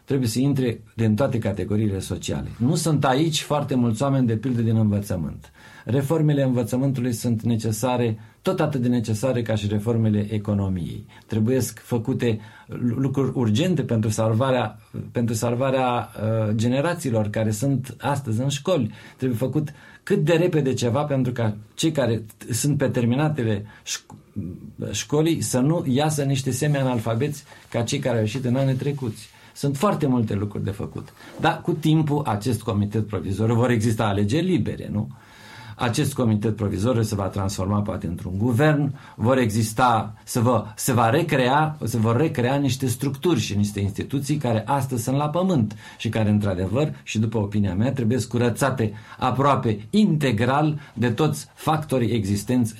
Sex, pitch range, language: male, 110-140 Hz, Romanian